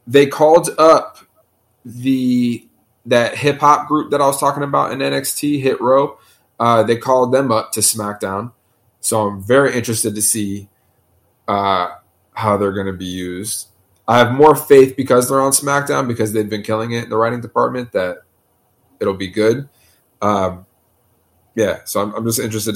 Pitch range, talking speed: 100-125 Hz, 170 wpm